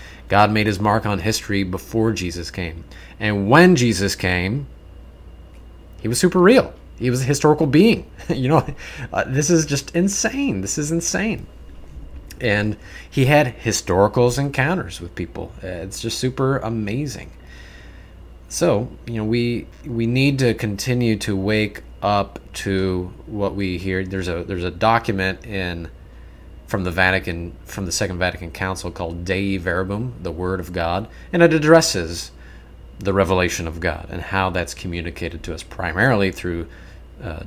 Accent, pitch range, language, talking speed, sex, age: American, 85-110 Hz, English, 155 wpm, male, 30-49